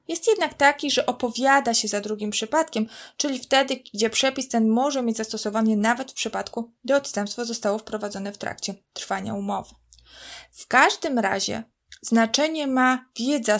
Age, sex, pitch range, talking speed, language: 20-39, female, 205-240 Hz, 150 wpm, Polish